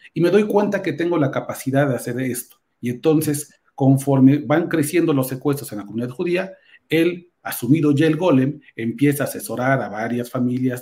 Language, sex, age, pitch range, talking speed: Spanish, male, 40-59, 125-160 Hz, 185 wpm